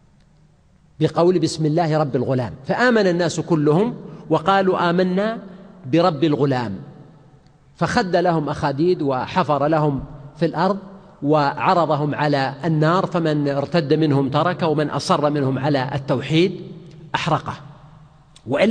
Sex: male